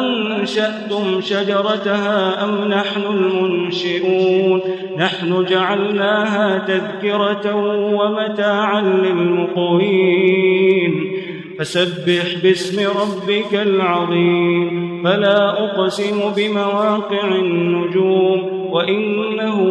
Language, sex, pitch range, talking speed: Arabic, male, 185-205 Hz, 60 wpm